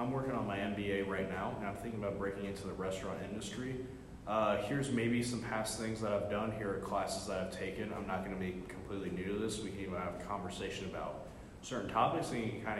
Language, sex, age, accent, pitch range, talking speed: English, male, 20-39, American, 95-125 Hz, 250 wpm